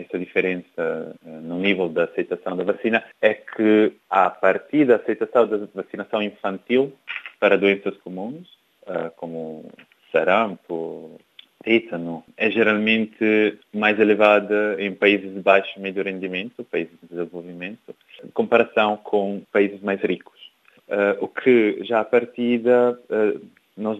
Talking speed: 125 wpm